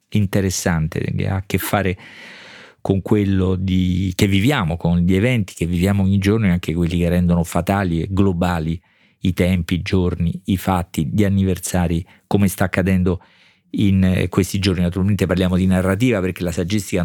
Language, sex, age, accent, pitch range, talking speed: Italian, male, 50-69, native, 90-110 Hz, 165 wpm